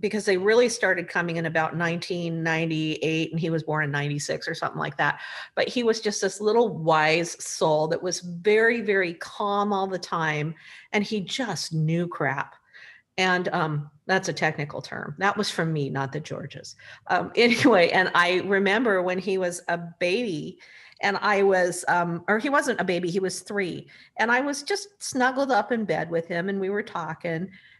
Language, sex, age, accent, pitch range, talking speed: English, female, 50-69, American, 170-215 Hz, 190 wpm